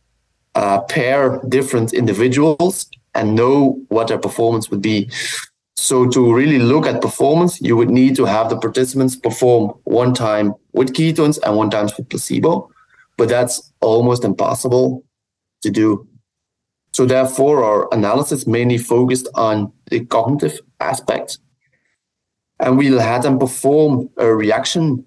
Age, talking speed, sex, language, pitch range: 30-49, 135 wpm, male, English, 110-135 Hz